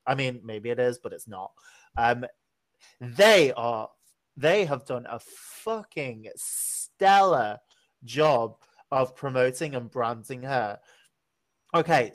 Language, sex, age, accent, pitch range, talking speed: English, male, 30-49, British, 125-150 Hz, 120 wpm